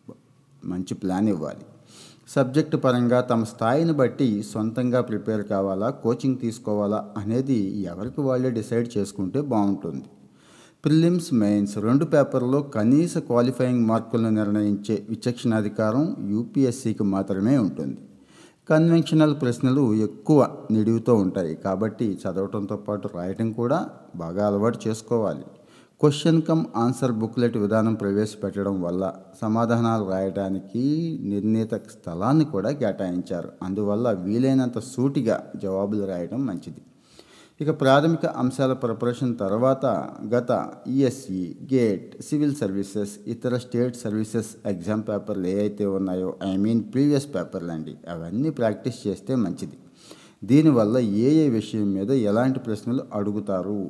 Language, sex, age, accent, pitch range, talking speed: Telugu, male, 60-79, native, 100-130 Hz, 110 wpm